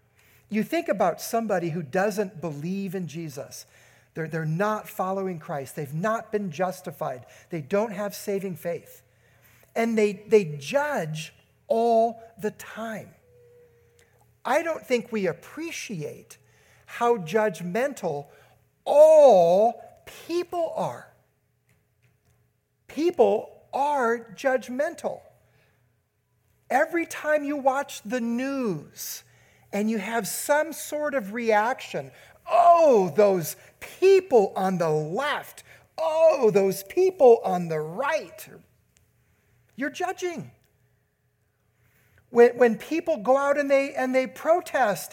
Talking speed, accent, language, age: 105 wpm, American, English, 50-69